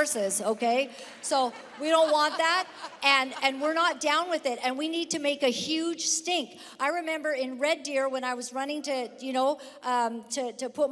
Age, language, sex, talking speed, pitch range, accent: 50-69, English, female, 205 wpm, 250-310 Hz, American